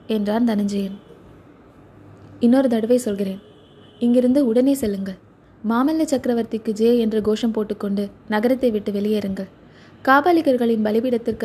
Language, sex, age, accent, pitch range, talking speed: Tamil, female, 20-39, native, 210-255 Hz, 100 wpm